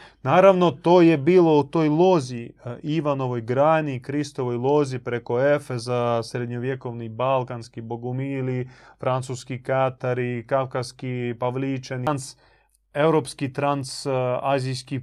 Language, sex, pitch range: Croatian, male, 125-155 Hz